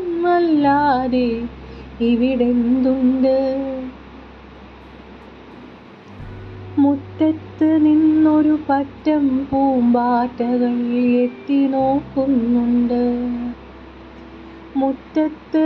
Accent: native